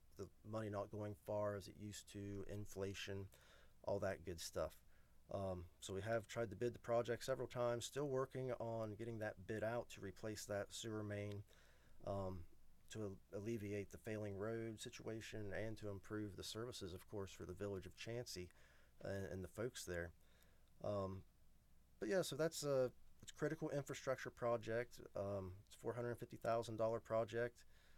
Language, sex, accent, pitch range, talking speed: English, male, American, 95-115 Hz, 170 wpm